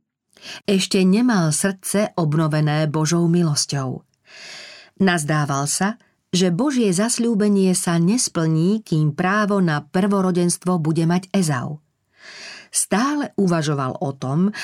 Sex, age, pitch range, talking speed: female, 40-59, 155-200 Hz, 100 wpm